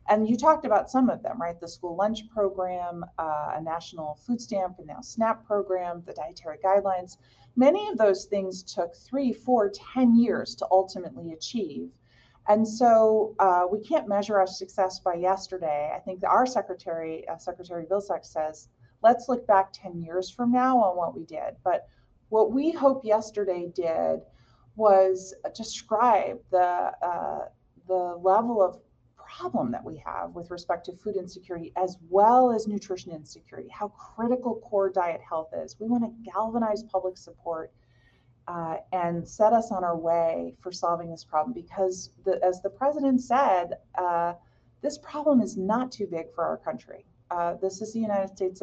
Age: 30-49